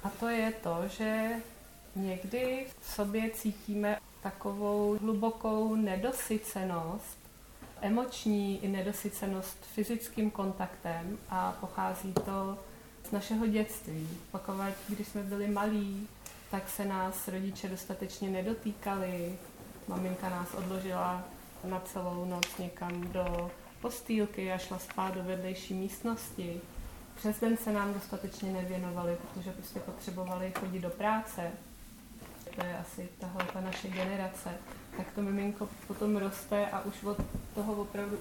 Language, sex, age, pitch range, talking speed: Czech, female, 30-49, 185-210 Hz, 120 wpm